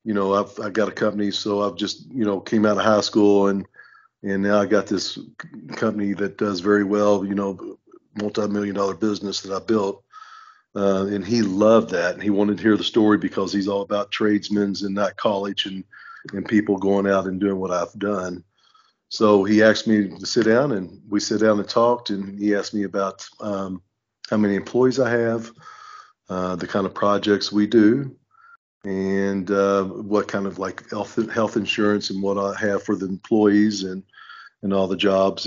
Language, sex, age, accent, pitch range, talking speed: English, male, 40-59, American, 95-110 Hz, 200 wpm